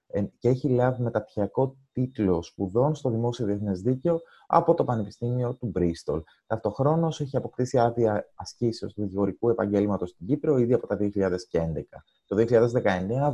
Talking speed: 140 wpm